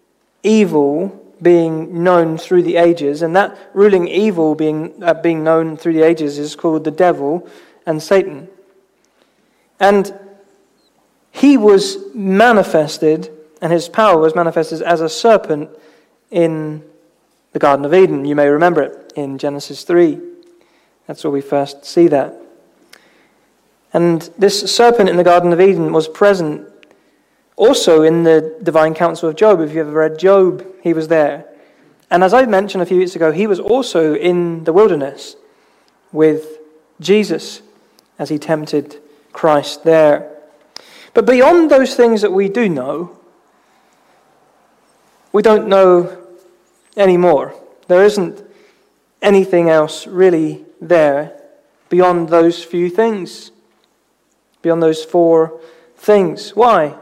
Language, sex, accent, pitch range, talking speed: English, male, British, 160-200 Hz, 135 wpm